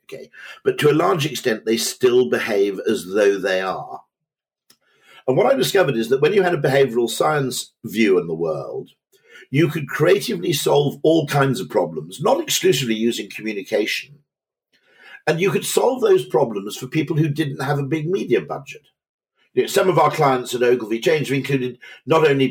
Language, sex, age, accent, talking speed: English, male, 50-69, British, 175 wpm